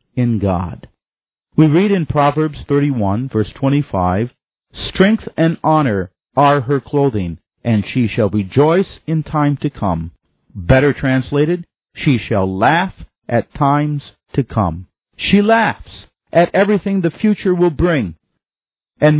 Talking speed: 130 wpm